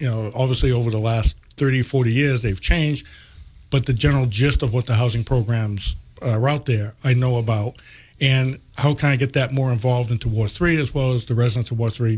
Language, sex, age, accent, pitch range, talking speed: English, male, 50-69, American, 115-130 Hz, 220 wpm